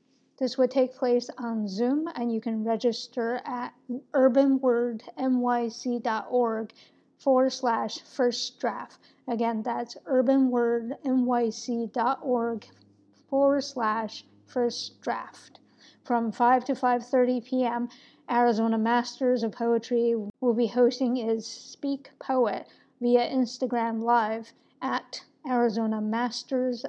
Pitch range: 230-255 Hz